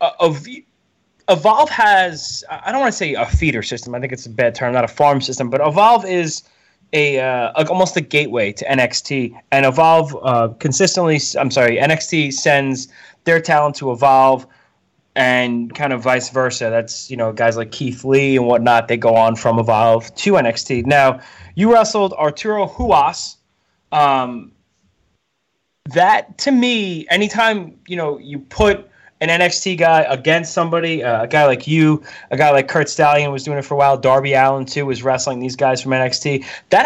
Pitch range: 130-175 Hz